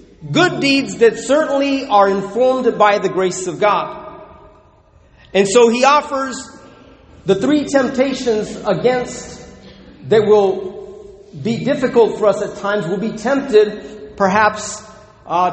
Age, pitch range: 40-59, 200-265 Hz